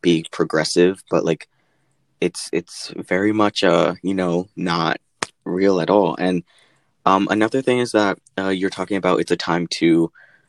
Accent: American